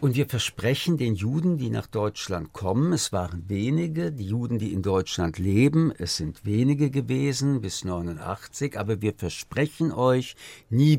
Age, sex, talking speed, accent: 60-79, male, 160 wpm, German